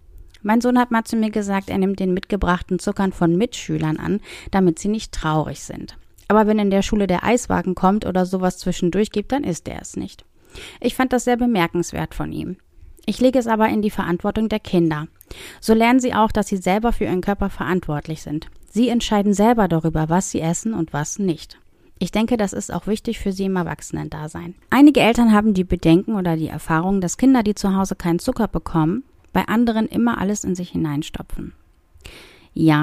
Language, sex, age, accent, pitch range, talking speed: German, female, 30-49, German, 170-225 Hz, 200 wpm